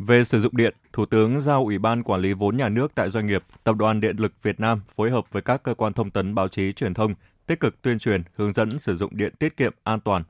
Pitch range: 100-120 Hz